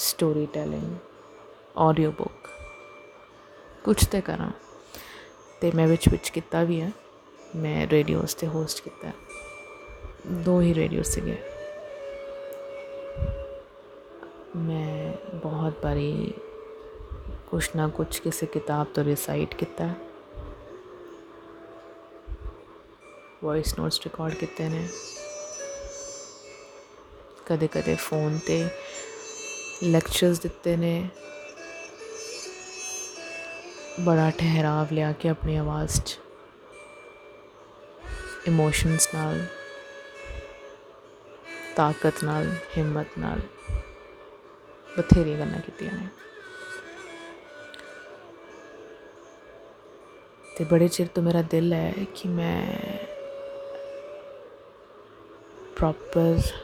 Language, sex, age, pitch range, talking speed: Punjabi, female, 30-49, 155-245 Hz, 80 wpm